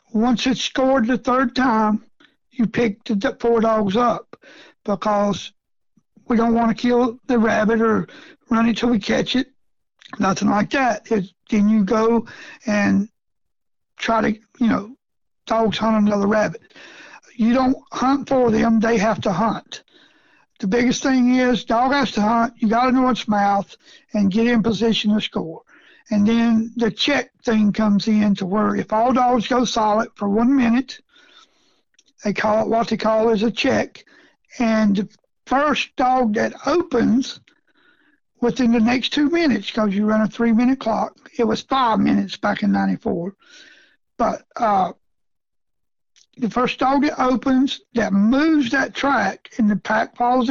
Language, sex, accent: English, male, American